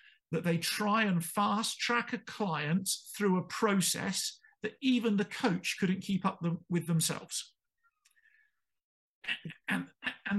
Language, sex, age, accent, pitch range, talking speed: English, male, 50-69, British, 170-220 Hz, 120 wpm